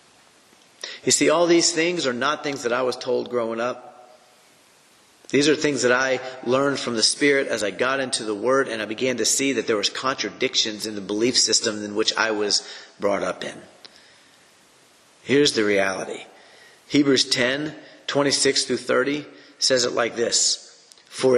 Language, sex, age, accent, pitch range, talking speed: English, male, 40-59, American, 115-140 Hz, 175 wpm